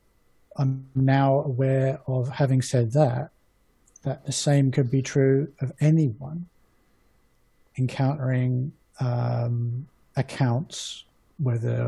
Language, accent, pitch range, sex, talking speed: English, British, 125-140 Hz, male, 95 wpm